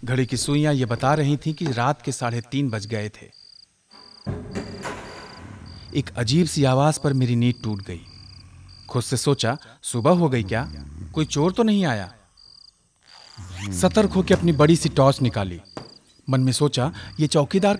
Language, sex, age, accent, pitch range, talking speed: Hindi, male, 40-59, native, 120-150 Hz, 160 wpm